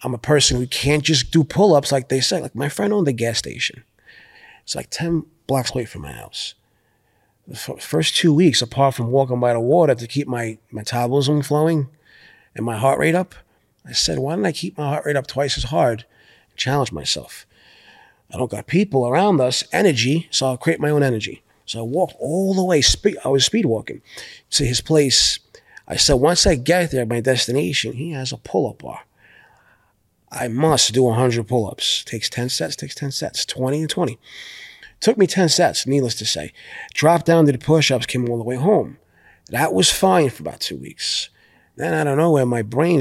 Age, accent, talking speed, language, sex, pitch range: 30-49, American, 205 wpm, English, male, 125-160 Hz